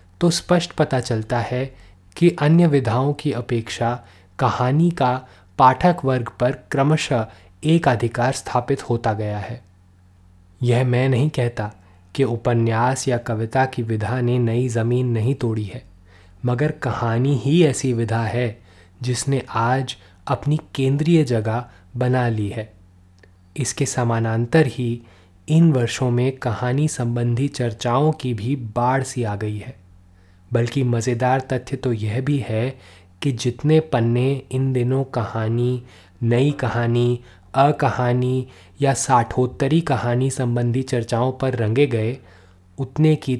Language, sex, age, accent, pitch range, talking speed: Hindi, male, 20-39, native, 110-135 Hz, 130 wpm